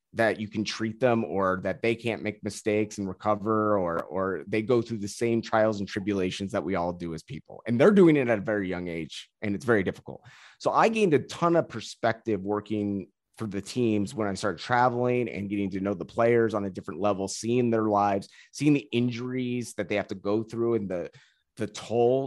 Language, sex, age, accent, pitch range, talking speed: English, male, 30-49, American, 100-120 Hz, 225 wpm